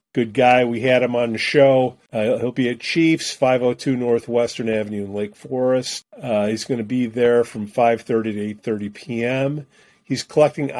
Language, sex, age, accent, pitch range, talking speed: English, male, 40-59, American, 115-145 Hz, 190 wpm